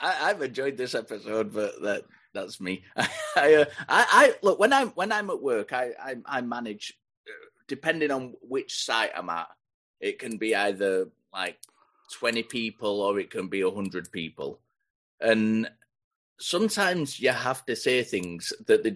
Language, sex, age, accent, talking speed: English, male, 30-49, British, 160 wpm